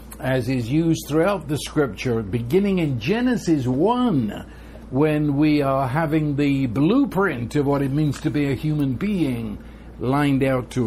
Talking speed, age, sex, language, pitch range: 155 wpm, 60-79, male, English, 125-160 Hz